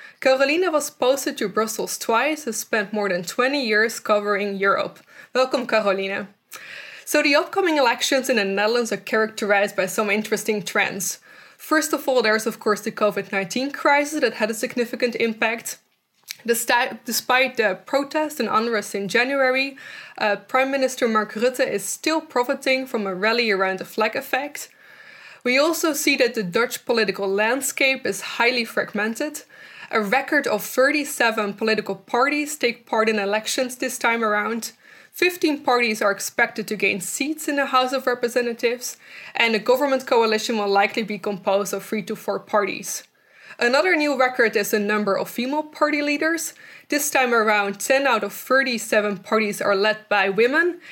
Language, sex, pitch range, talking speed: English, female, 210-275 Hz, 160 wpm